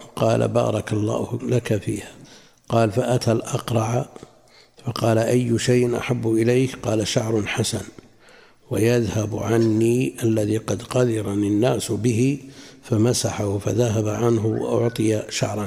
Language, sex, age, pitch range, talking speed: Arabic, male, 60-79, 110-125 Hz, 105 wpm